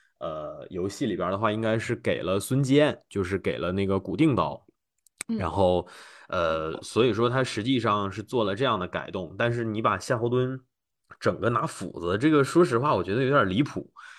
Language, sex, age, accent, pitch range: Chinese, male, 20-39, native, 105-145 Hz